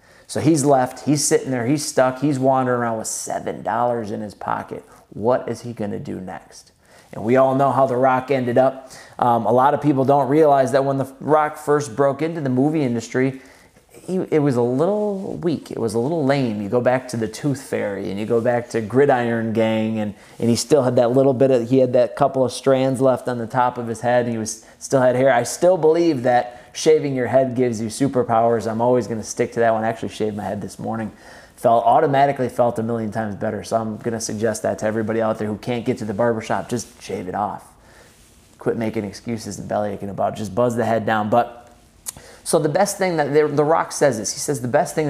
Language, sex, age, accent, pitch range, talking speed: English, male, 30-49, American, 115-135 Hz, 240 wpm